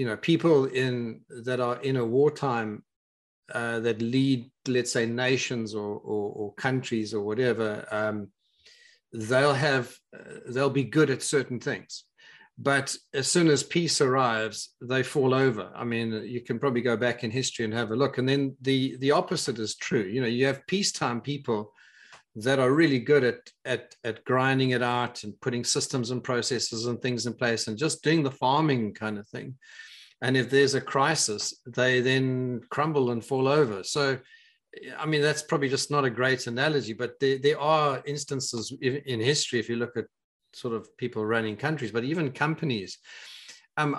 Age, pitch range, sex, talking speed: 40-59, 120-145 Hz, male, 185 wpm